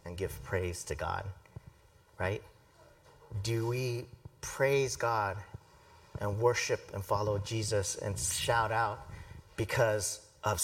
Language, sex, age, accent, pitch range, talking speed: English, male, 40-59, American, 100-120 Hz, 115 wpm